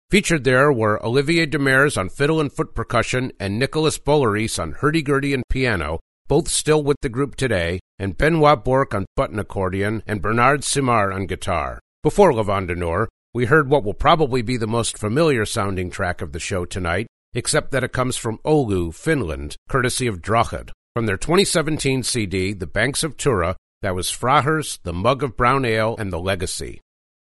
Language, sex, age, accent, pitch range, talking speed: English, male, 50-69, American, 100-140 Hz, 175 wpm